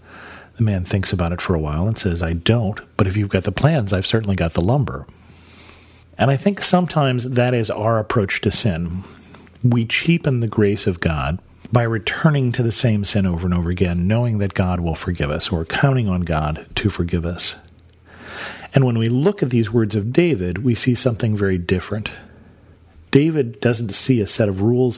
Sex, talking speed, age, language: male, 200 wpm, 40-59, English